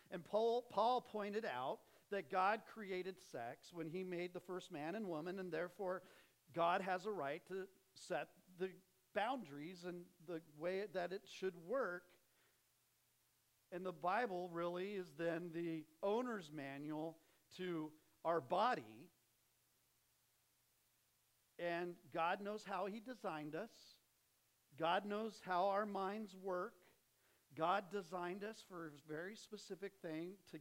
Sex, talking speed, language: male, 135 wpm, English